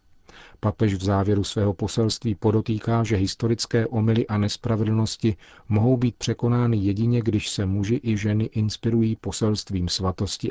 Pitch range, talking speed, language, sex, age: 95-110 Hz, 130 wpm, Czech, male, 40-59